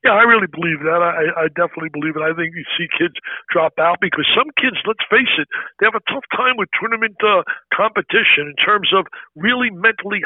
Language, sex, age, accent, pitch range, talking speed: English, male, 60-79, American, 180-220 Hz, 215 wpm